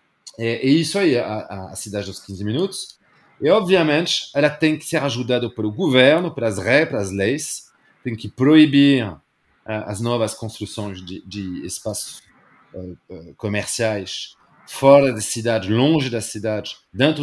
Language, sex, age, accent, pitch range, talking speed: Portuguese, male, 40-59, French, 105-145 Hz, 150 wpm